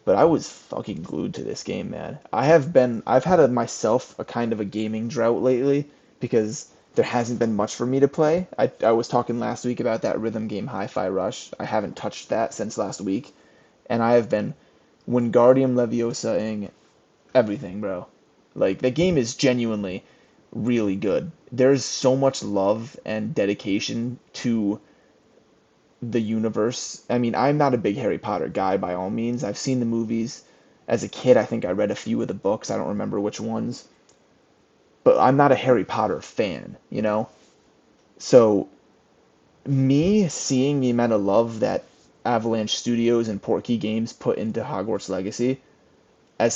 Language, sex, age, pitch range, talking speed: English, male, 20-39, 110-130 Hz, 175 wpm